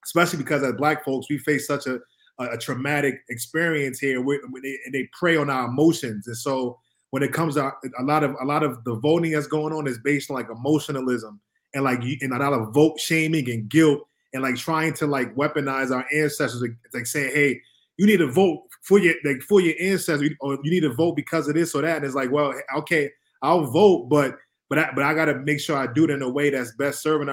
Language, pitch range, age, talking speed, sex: English, 130-150 Hz, 20-39, 240 wpm, male